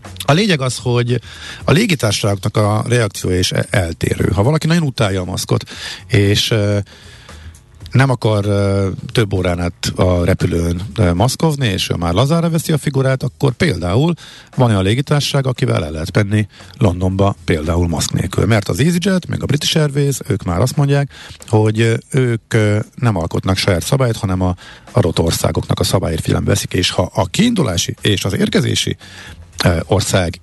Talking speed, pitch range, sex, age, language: 155 wpm, 95-130 Hz, male, 50-69, Hungarian